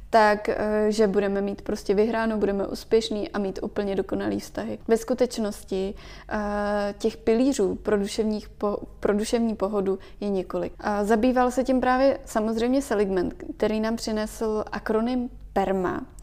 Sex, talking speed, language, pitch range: female, 135 wpm, Czech, 205-235 Hz